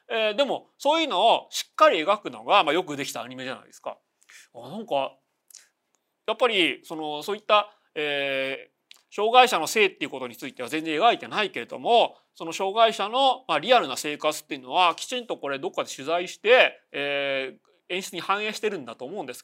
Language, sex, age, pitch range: Japanese, male, 30-49, 150-245 Hz